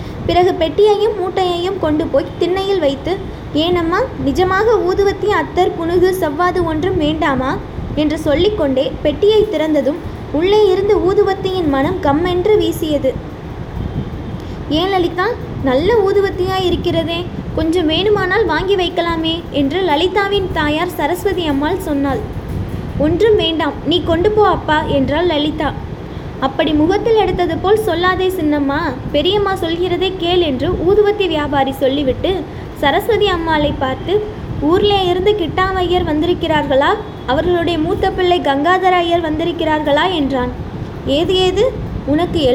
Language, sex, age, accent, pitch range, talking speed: English, female, 20-39, Indian, 310-385 Hz, 100 wpm